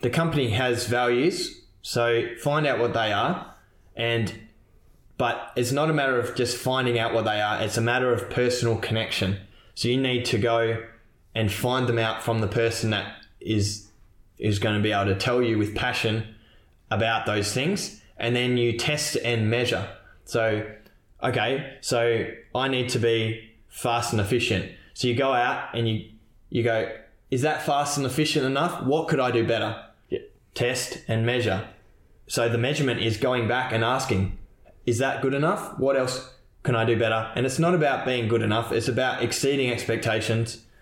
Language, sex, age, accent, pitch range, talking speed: English, male, 20-39, Australian, 110-125 Hz, 180 wpm